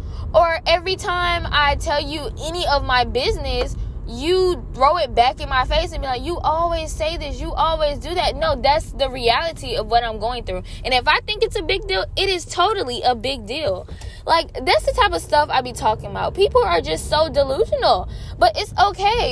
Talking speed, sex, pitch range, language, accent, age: 215 wpm, female, 260-370 Hz, English, American, 10-29